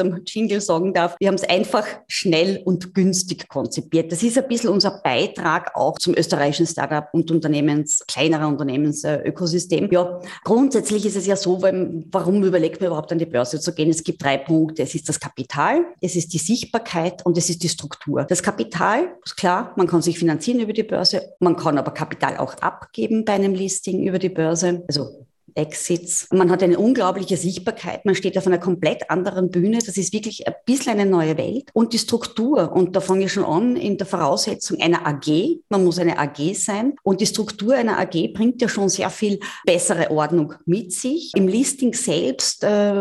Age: 30-49